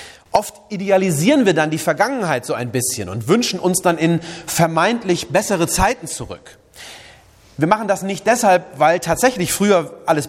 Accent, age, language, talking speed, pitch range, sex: German, 30-49, German, 155 wpm, 140-190 Hz, male